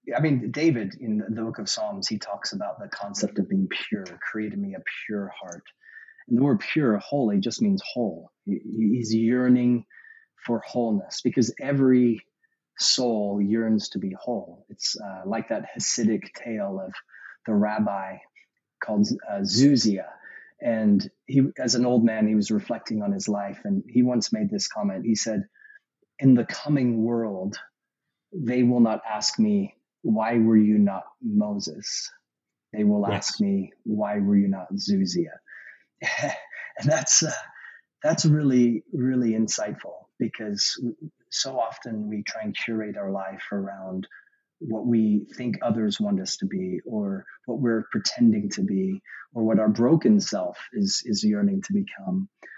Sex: male